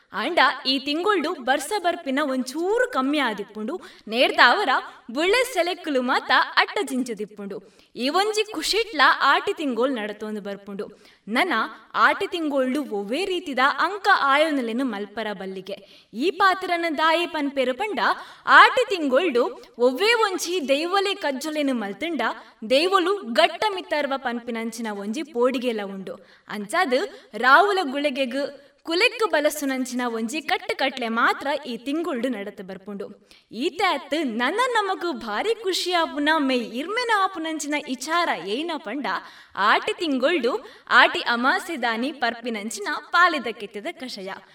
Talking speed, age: 110 wpm, 20-39